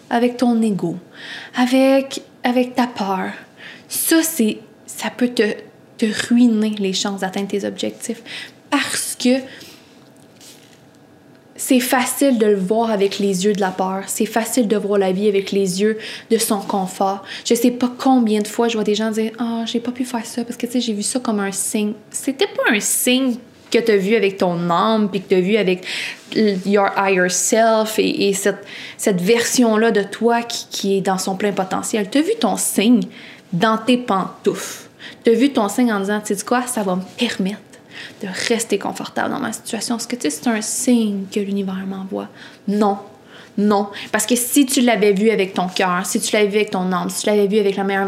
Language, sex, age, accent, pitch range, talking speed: English, female, 20-39, Canadian, 195-235 Hz, 210 wpm